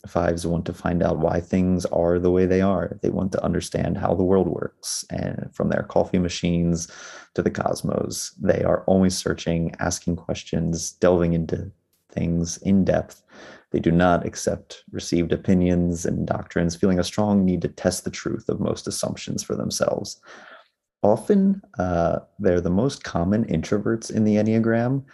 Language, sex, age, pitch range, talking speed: English, male, 30-49, 85-100 Hz, 165 wpm